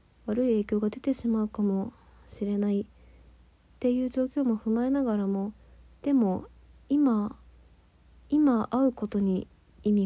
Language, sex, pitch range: Japanese, female, 190-230 Hz